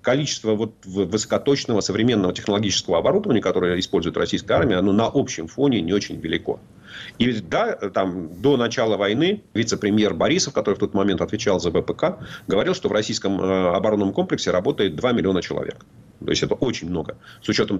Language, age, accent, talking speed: Russian, 40-59, native, 150 wpm